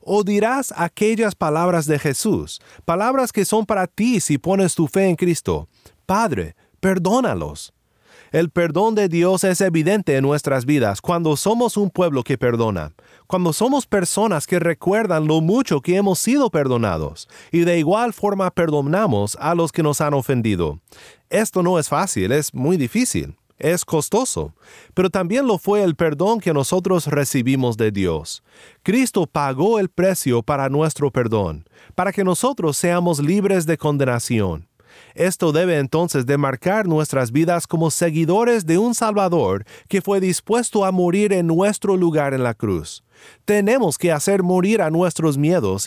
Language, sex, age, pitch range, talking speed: Spanish, male, 40-59, 145-195 Hz, 155 wpm